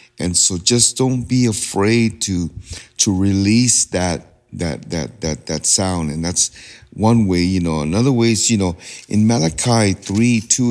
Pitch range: 90-115 Hz